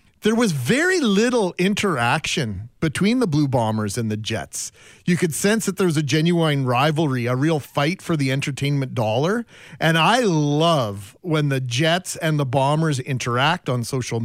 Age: 40-59